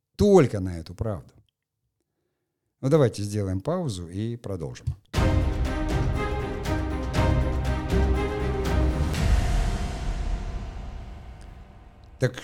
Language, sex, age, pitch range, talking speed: Russian, male, 50-69, 95-125 Hz, 55 wpm